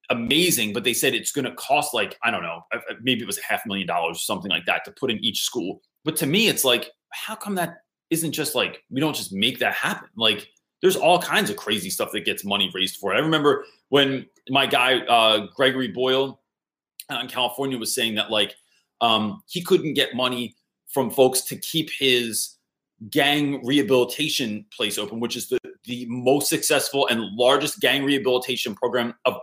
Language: English